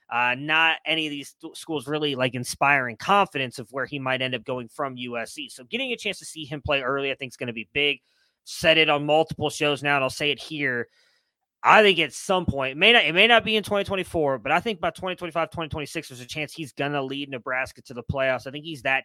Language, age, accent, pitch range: English, 20-39, American, 130-155 Hz